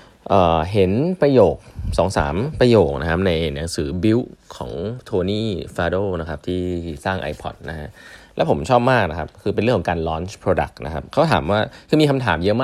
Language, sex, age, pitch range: Thai, male, 20-39, 85-110 Hz